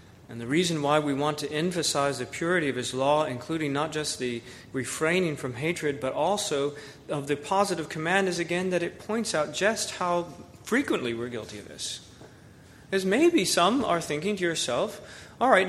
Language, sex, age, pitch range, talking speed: English, male, 40-59, 125-170 Hz, 185 wpm